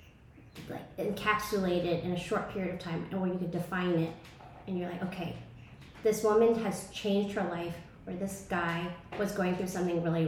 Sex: female